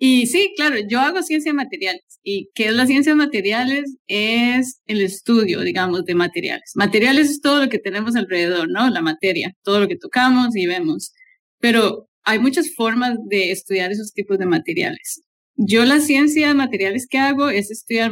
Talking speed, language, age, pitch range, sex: 185 wpm, English, 20-39, 195-255 Hz, female